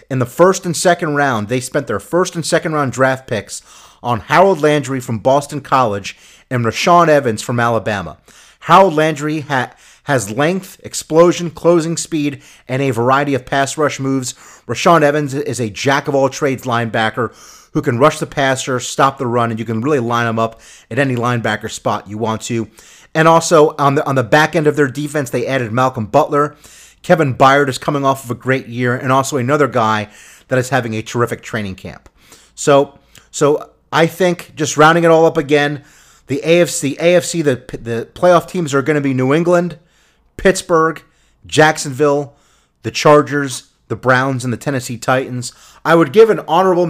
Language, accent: English, American